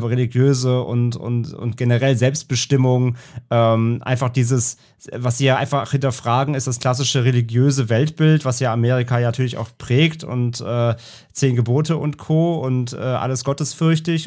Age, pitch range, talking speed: 30-49, 120-140 Hz, 150 wpm